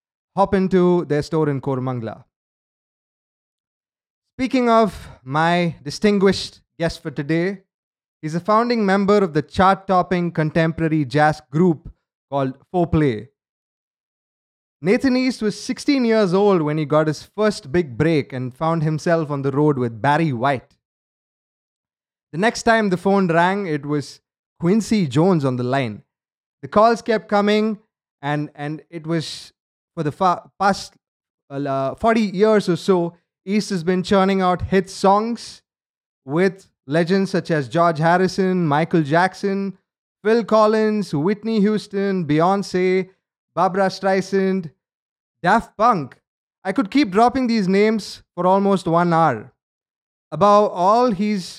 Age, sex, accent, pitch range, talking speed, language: 20-39, male, Indian, 155-200 Hz, 135 wpm, English